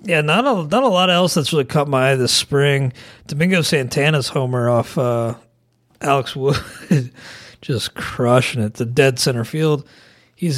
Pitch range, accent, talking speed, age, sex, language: 125-165 Hz, American, 165 wpm, 40-59, male, English